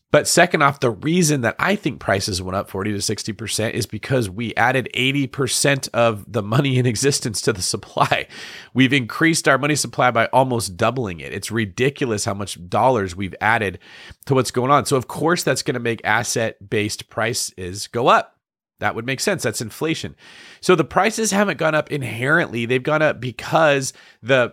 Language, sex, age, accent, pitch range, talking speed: English, male, 30-49, American, 110-140 Hz, 185 wpm